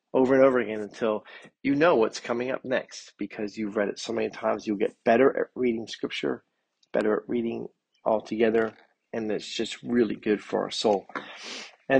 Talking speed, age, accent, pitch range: 190 wpm, 40-59, American, 105-125 Hz